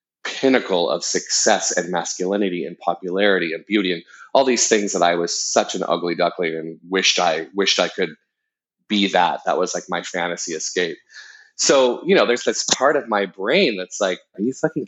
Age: 30-49